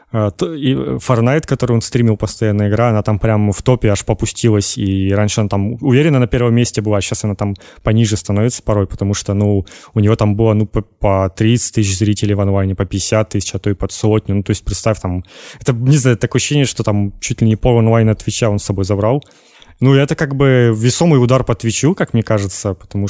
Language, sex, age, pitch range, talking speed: Russian, male, 20-39, 105-125 Hz, 225 wpm